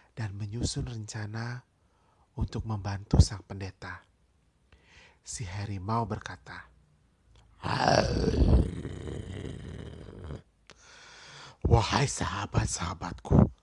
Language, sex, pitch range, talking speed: Indonesian, male, 95-115 Hz, 55 wpm